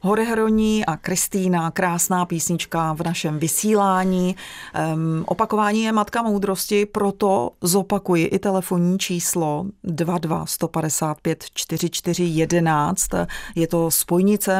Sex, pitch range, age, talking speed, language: female, 165-190 Hz, 30-49, 100 wpm, Czech